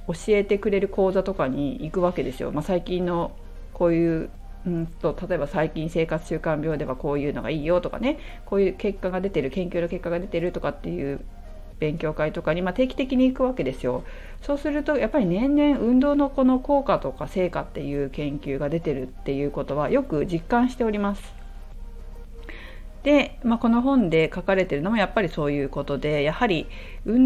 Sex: female